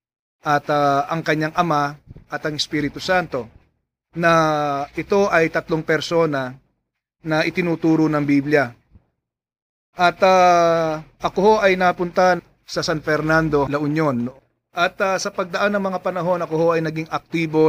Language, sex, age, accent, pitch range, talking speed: English, male, 30-49, Filipino, 140-165 Hz, 140 wpm